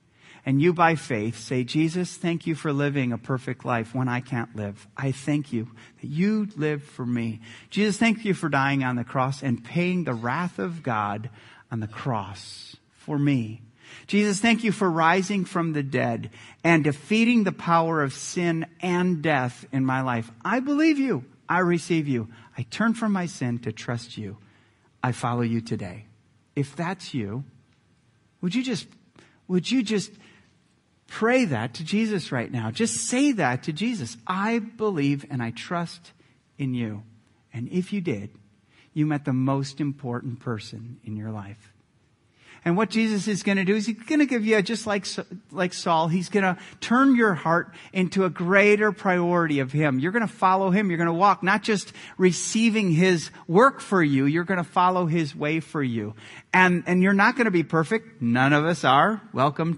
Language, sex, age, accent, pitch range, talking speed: English, male, 40-59, American, 120-185 Hz, 190 wpm